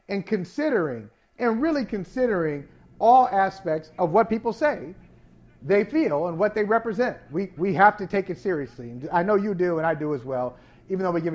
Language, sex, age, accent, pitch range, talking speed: English, male, 40-59, American, 175-230 Hz, 200 wpm